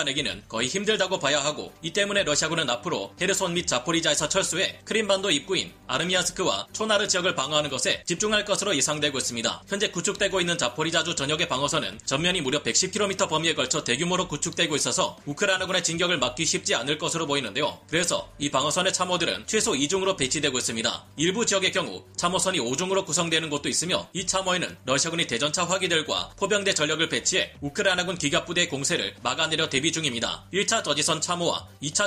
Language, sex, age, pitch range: Korean, male, 30-49, 145-185 Hz